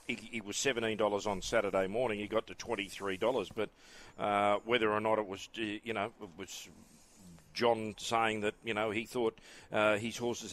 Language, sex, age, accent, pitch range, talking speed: English, male, 40-59, Australian, 100-120 Hz, 195 wpm